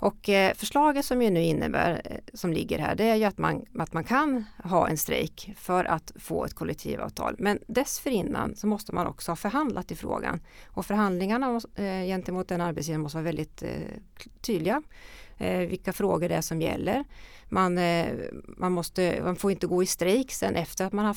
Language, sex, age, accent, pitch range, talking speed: Swedish, female, 30-49, native, 170-210 Hz, 180 wpm